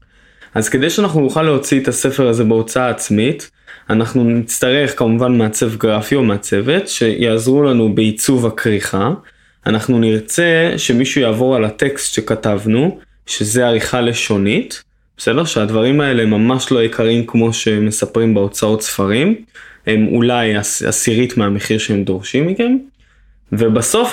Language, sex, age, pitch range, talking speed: Hebrew, male, 20-39, 110-165 Hz, 125 wpm